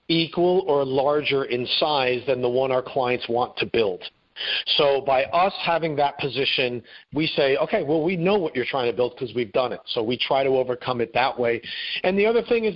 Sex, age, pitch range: male, 40-59, 130-165 Hz